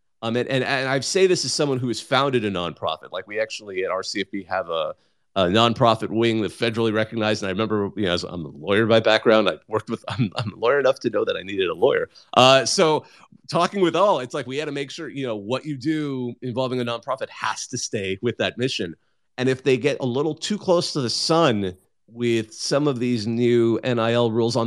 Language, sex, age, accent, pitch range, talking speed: English, male, 30-49, American, 110-150 Hz, 240 wpm